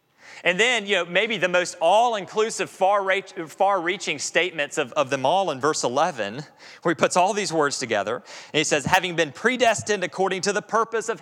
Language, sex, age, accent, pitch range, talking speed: English, male, 30-49, American, 135-205 Hz, 185 wpm